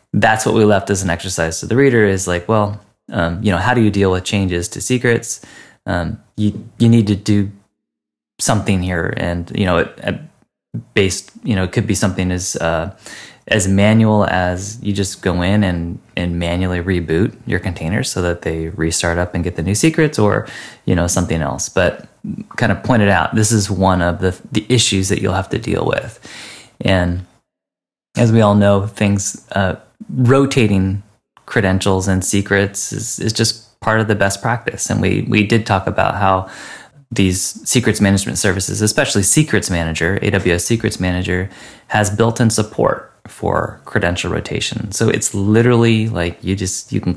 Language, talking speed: English, 180 wpm